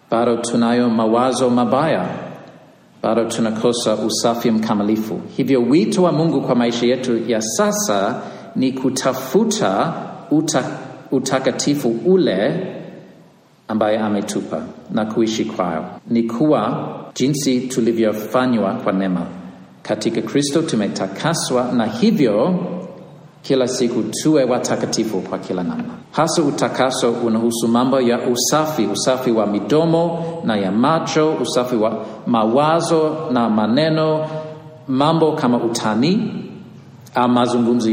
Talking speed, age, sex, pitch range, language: 105 wpm, 50-69, male, 115-155 Hz, Swahili